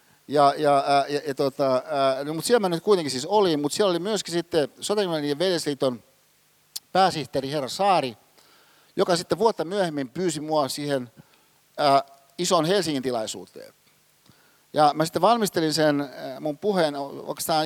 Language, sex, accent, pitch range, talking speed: Finnish, male, native, 140-175 Hz, 150 wpm